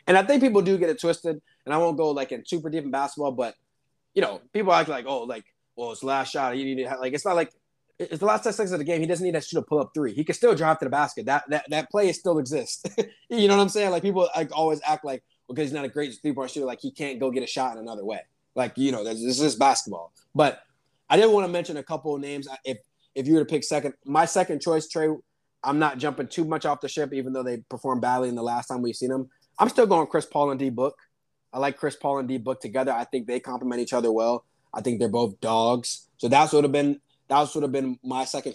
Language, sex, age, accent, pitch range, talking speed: English, male, 20-39, American, 125-155 Hz, 295 wpm